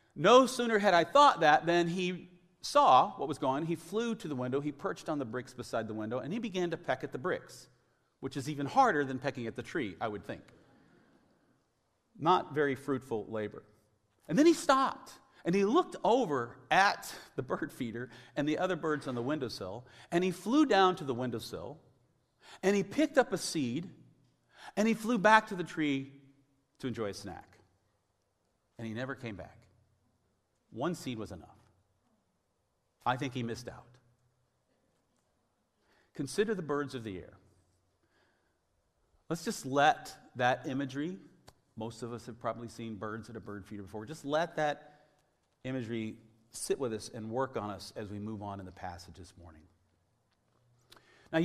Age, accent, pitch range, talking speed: 40-59, American, 115-165 Hz, 175 wpm